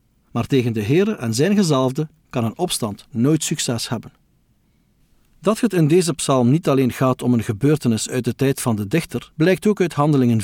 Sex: male